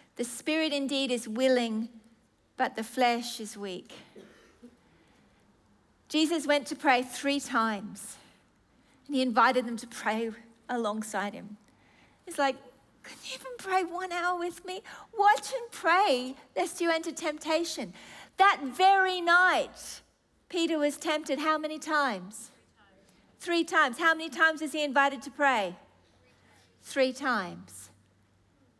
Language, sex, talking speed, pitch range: English, female, 130 wpm, 245-370 Hz